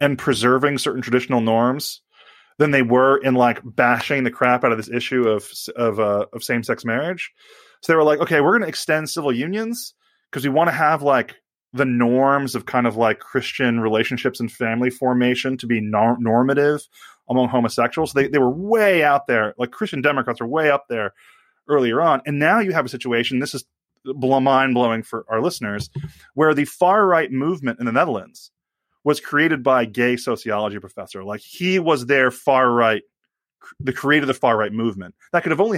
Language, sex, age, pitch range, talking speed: English, male, 20-39, 120-150 Hz, 190 wpm